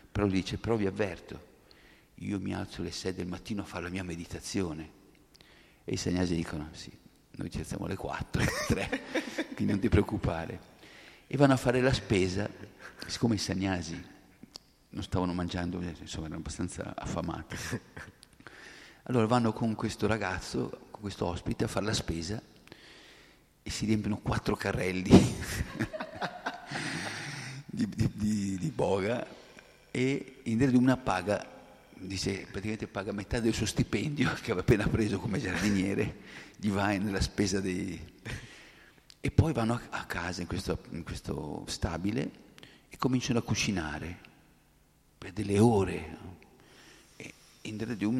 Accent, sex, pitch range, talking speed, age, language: native, male, 90-110 Hz, 140 wpm, 50-69, Italian